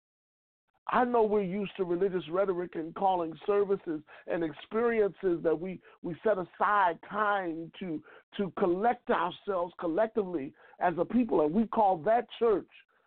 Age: 50-69